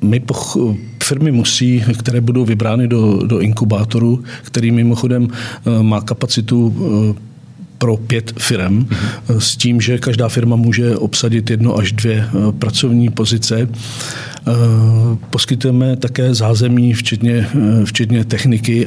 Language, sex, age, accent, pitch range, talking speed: Czech, male, 50-69, native, 110-125 Hz, 105 wpm